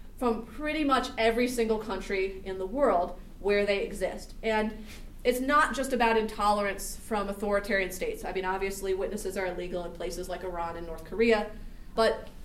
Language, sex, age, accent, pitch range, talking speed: English, female, 30-49, American, 195-235 Hz, 170 wpm